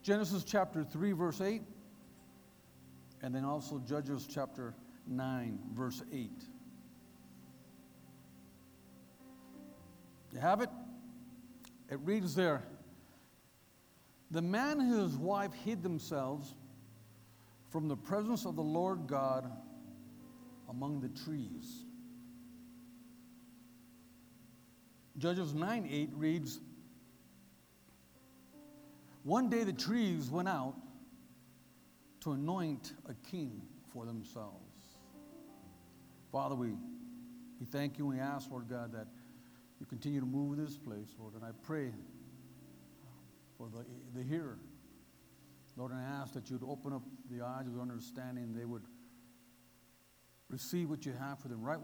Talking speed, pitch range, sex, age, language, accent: 115 wpm, 120-175 Hz, male, 60-79, English, American